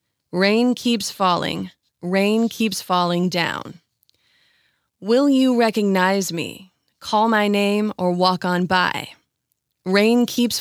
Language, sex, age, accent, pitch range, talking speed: English, female, 30-49, American, 185-225 Hz, 115 wpm